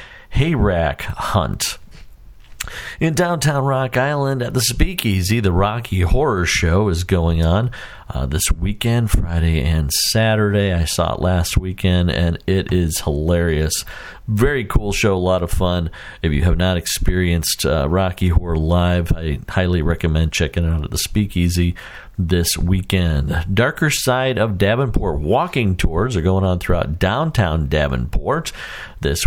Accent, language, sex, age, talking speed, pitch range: American, English, male, 50-69, 145 wpm, 85-115 Hz